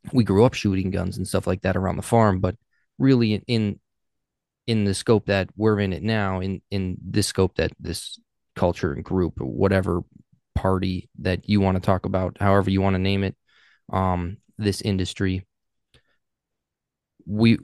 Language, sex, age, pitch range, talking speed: English, male, 20-39, 95-110 Hz, 170 wpm